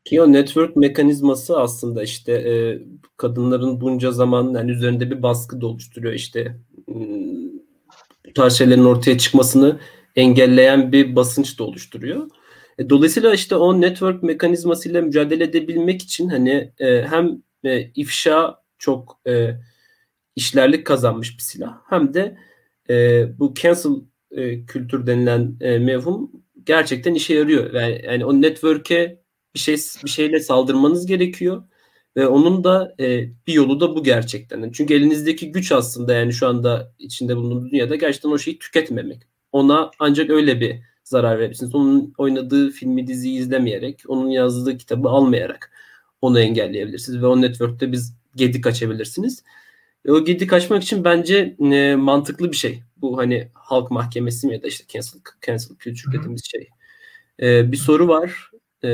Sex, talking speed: male, 135 wpm